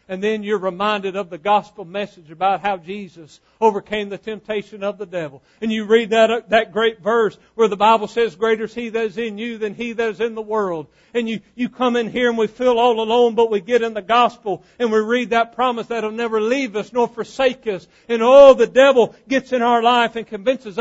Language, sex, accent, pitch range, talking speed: English, male, American, 205-255 Hz, 235 wpm